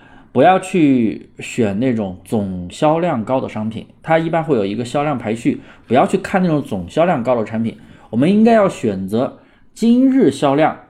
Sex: male